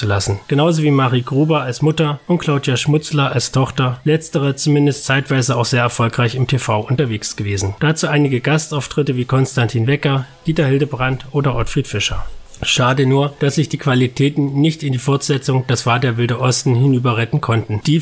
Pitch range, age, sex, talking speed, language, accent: 125-145 Hz, 30-49, male, 170 wpm, German, German